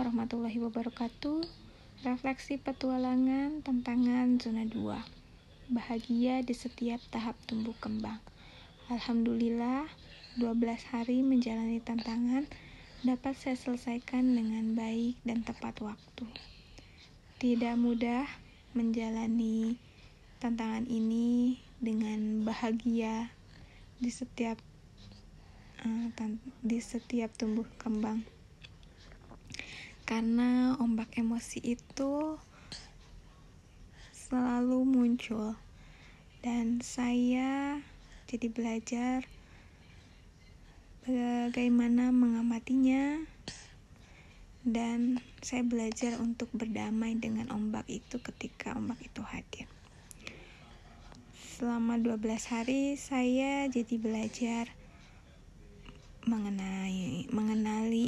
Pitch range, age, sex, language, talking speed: 225-250 Hz, 20-39, female, Indonesian, 75 wpm